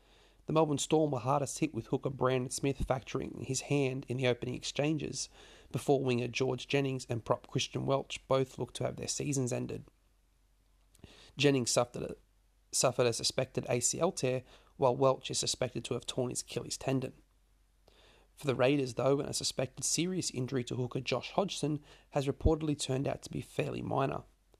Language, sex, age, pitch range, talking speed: English, male, 30-49, 125-145 Hz, 170 wpm